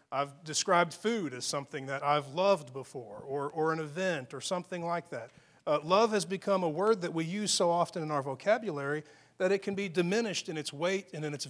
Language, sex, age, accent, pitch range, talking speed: English, male, 40-59, American, 150-195 Hz, 220 wpm